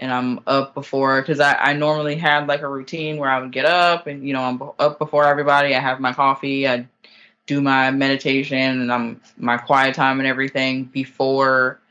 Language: English